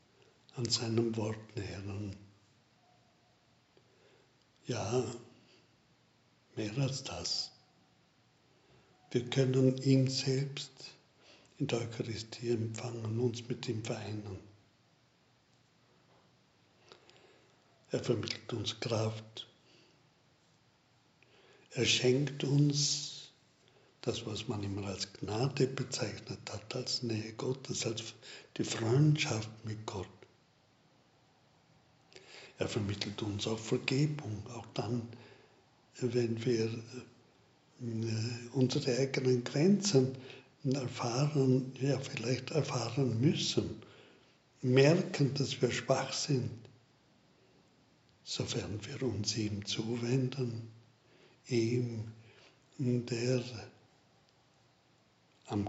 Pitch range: 115-135 Hz